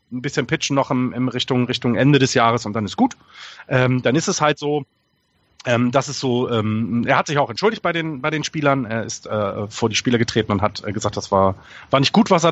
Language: German